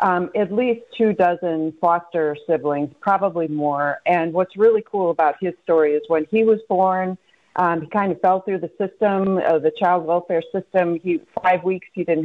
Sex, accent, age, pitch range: female, American, 40-59, 165-200 Hz